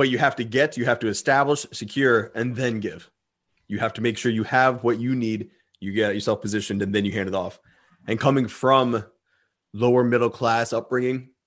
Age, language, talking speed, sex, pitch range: 20-39, English, 210 wpm, male, 110-130 Hz